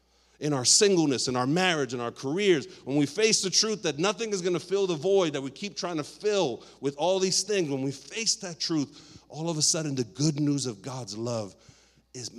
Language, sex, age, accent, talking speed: English, male, 50-69, American, 230 wpm